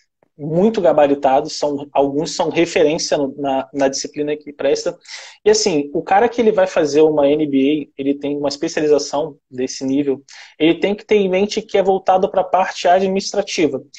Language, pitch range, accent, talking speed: Portuguese, 145-190 Hz, Brazilian, 175 wpm